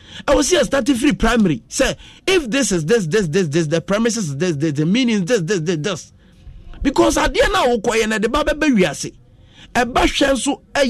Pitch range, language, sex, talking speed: 175-270 Hz, English, male, 140 wpm